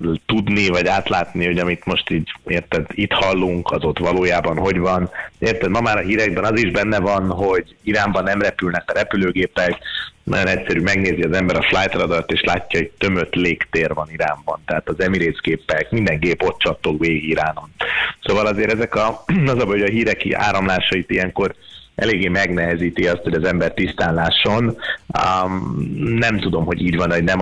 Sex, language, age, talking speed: male, Hungarian, 30-49, 175 wpm